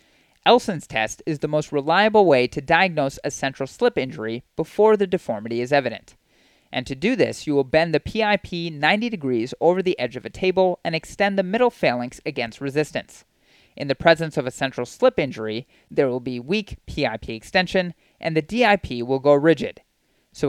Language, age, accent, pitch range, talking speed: English, 30-49, American, 135-185 Hz, 185 wpm